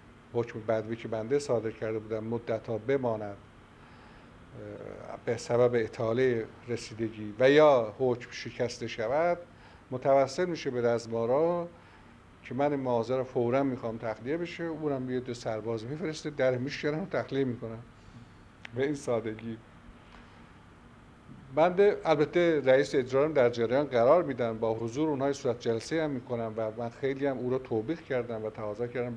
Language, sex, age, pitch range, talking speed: Persian, male, 50-69, 115-145 Hz, 145 wpm